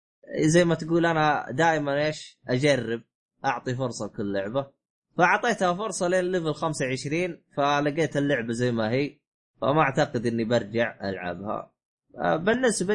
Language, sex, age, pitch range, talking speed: Arabic, male, 20-39, 115-165 Hz, 125 wpm